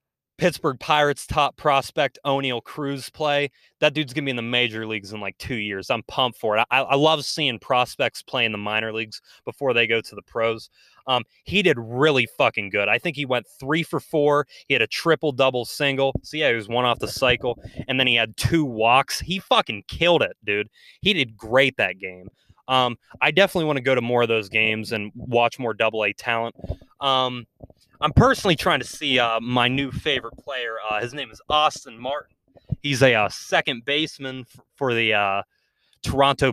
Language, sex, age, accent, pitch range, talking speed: English, male, 20-39, American, 110-140 Hz, 205 wpm